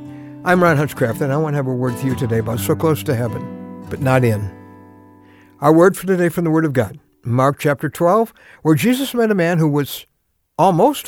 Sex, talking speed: male, 220 wpm